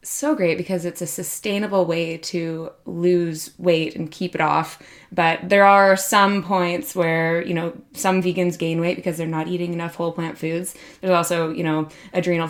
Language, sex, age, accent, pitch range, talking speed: English, female, 20-39, American, 170-195 Hz, 185 wpm